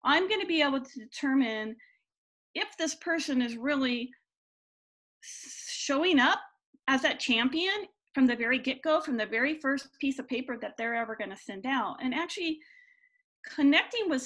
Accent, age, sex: American, 40-59, female